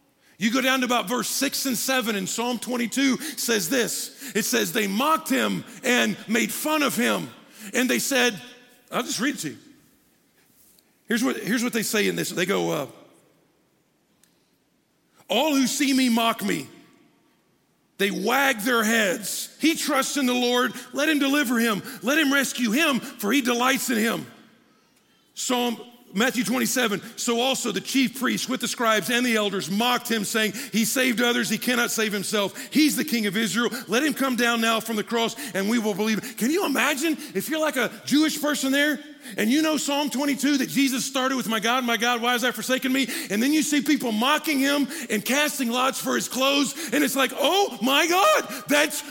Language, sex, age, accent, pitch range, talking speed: English, male, 50-69, American, 230-280 Hz, 195 wpm